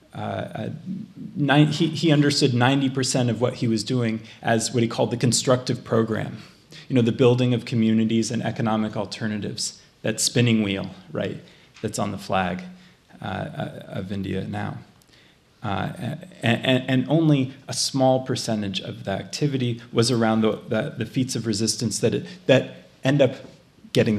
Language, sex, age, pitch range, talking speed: English, male, 30-49, 110-130 Hz, 165 wpm